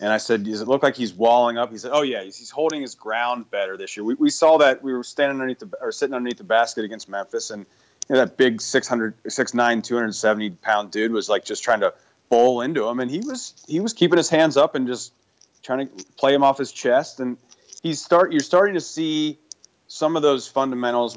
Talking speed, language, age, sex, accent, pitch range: 250 wpm, English, 30-49, male, American, 110-135 Hz